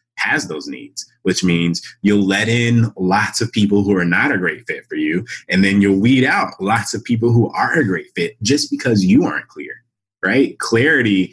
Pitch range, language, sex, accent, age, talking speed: 90-120 Hz, English, male, American, 20-39, 205 wpm